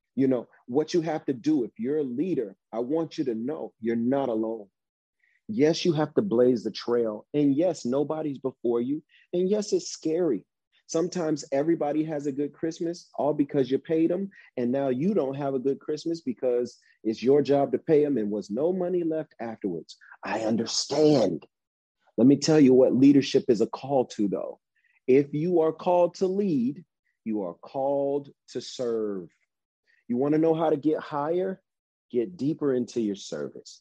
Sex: male